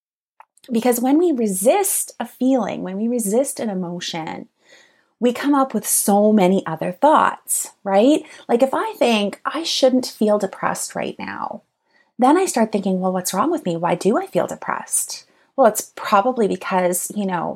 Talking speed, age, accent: 170 wpm, 30-49, American